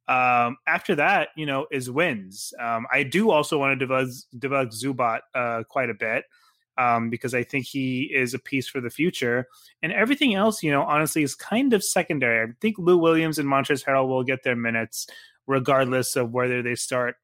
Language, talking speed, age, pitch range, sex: English, 200 wpm, 20-39, 125-150 Hz, male